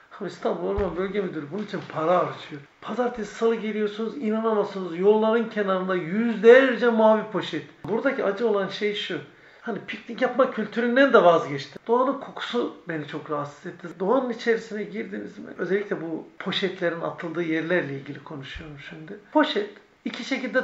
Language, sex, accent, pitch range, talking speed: Turkish, male, native, 180-230 Hz, 140 wpm